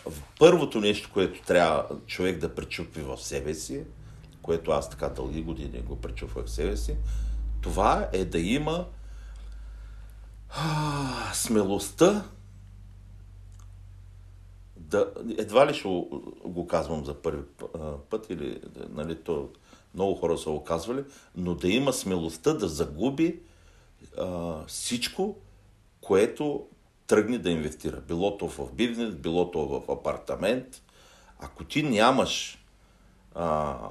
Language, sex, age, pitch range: Bulgarian, male, 60-79, 80-110 Hz